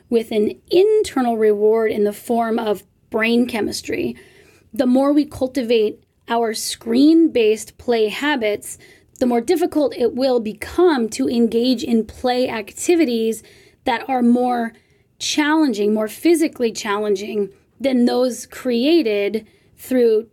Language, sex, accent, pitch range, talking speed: English, female, American, 225-265 Hz, 120 wpm